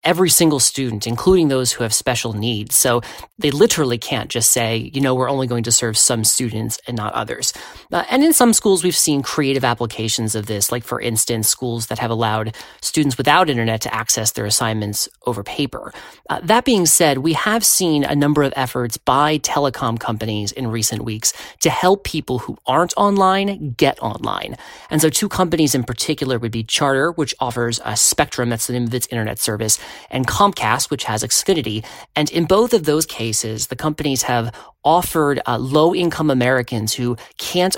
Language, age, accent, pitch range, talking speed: English, 30-49, American, 115-160 Hz, 190 wpm